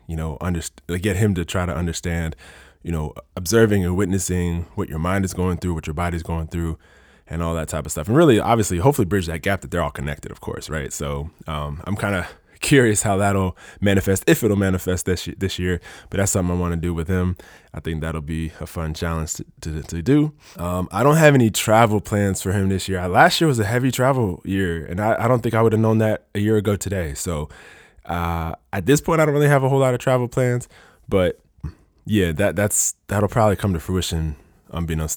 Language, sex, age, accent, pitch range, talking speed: English, male, 20-39, American, 80-105 Hz, 225 wpm